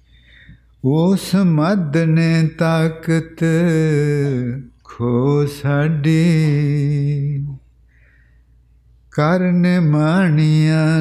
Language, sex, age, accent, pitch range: English, male, 50-69, Indian, 125-155 Hz